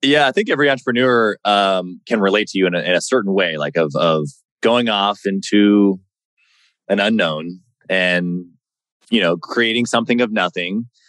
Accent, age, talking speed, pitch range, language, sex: American, 20-39, 170 wpm, 90-125 Hz, English, male